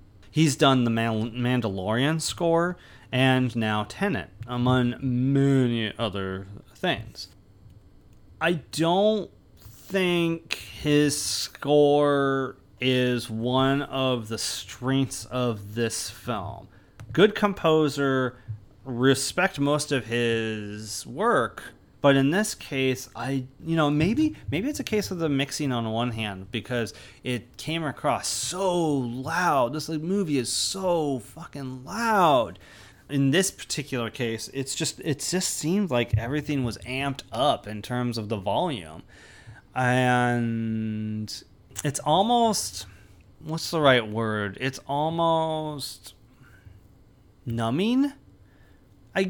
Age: 30-49